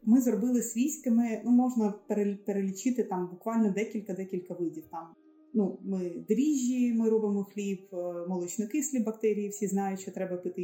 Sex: female